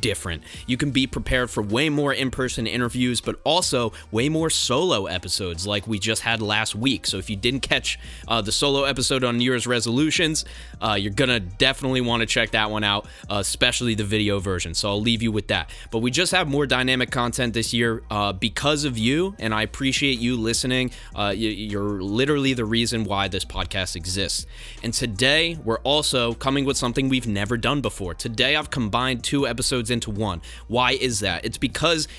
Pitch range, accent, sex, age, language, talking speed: 105-130 Hz, American, male, 20-39, English, 200 wpm